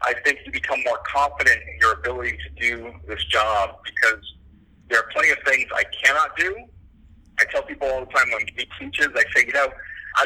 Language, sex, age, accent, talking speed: English, male, 50-69, American, 210 wpm